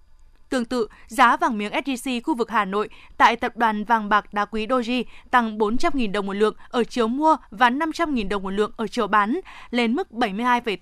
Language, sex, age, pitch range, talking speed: Vietnamese, female, 20-39, 215-265 Hz, 205 wpm